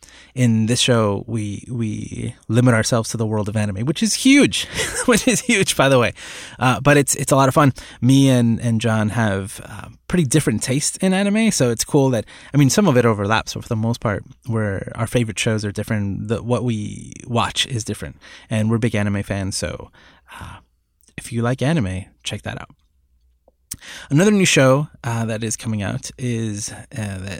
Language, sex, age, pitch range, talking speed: English, male, 20-39, 105-135 Hz, 200 wpm